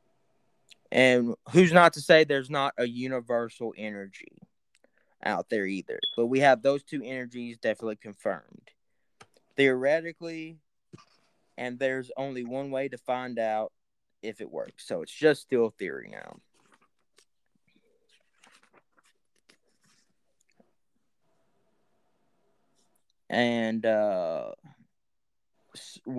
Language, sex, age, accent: English, male, 20-39, American